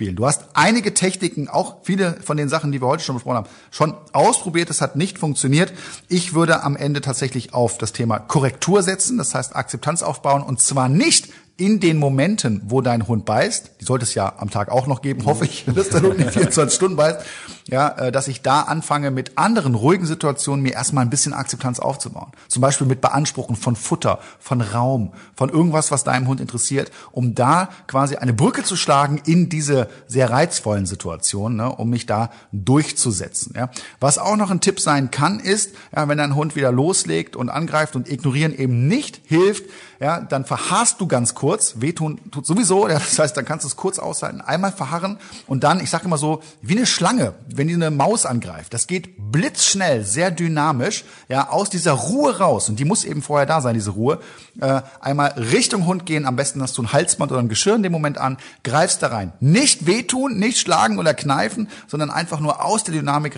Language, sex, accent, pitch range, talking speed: German, male, German, 125-170 Hz, 205 wpm